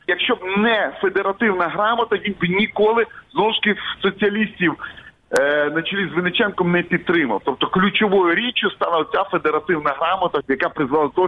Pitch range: 170-215 Hz